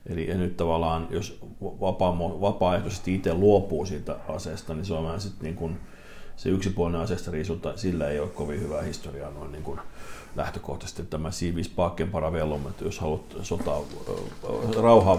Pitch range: 85-105 Hz